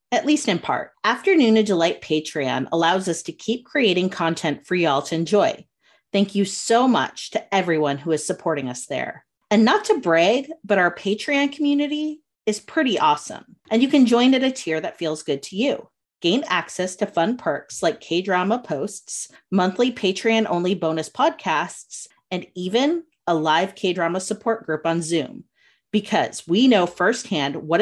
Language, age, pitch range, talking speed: English, 30-49, 165-230 Hz, 170 wpm